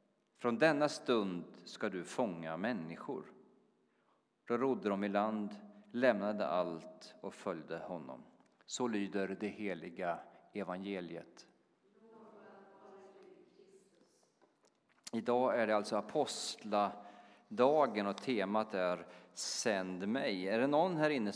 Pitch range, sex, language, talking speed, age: 105-140 Hz, male, Swedish, 105 wpm, 40-59